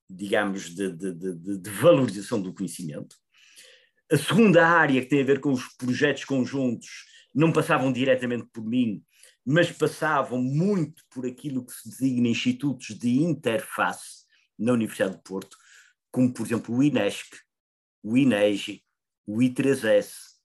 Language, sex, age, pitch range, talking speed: Portuguese, male, 50-69, 115-155 Hz, 140 wpm